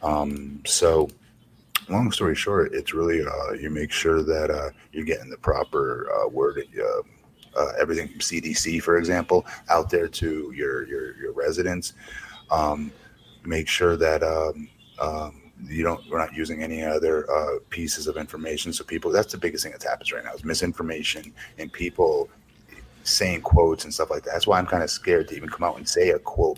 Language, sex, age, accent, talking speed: English, male, 30-49, American, 190 wpm